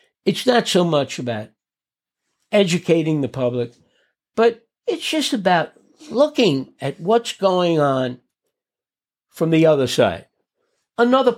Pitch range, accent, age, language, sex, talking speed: 135-220 Hz, American, 60-79, English, male, 115 wpm